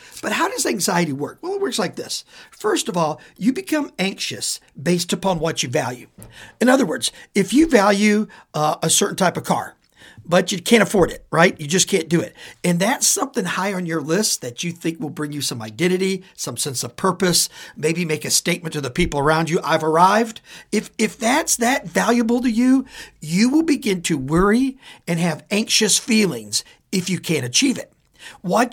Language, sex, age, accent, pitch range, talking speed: English, male, 50-69, American, 160-220 Hz, 200 wpm